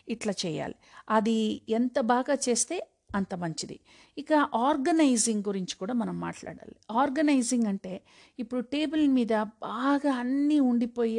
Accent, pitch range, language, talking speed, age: native, 215-275 Hz, Telugu, 120 wpm, 50-69